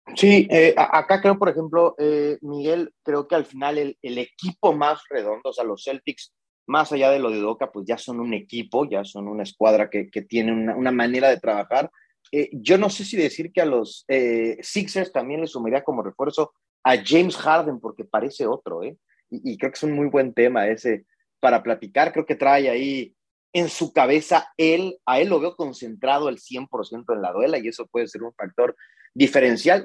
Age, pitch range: 30-49, 125-170 Hz